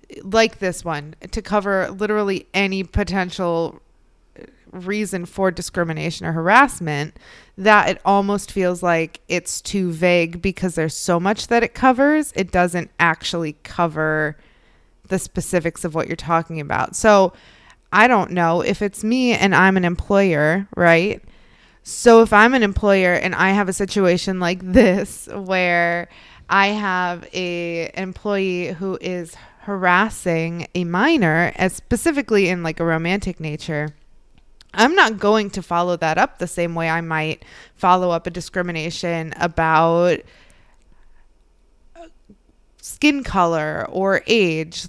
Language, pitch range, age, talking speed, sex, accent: English, 165-200 Hz, 20-39, 135 wpm, female, American